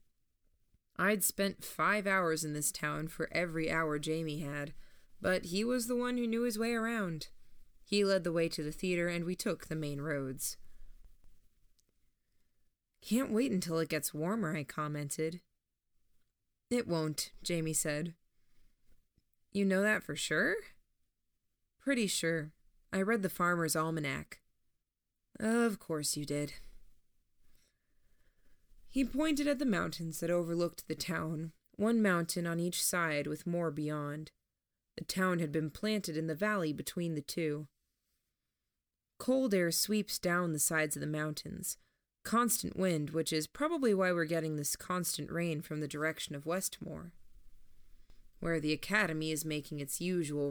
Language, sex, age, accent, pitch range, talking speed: English, female, 20-39, American, 150-190 Hz, 145 wpm